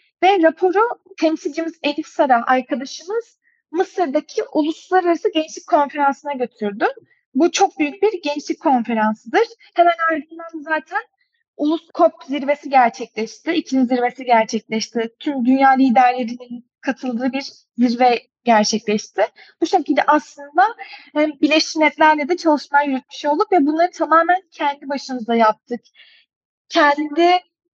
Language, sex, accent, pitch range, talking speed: Turkish, female, native, 270-345 Hz, 105 wpm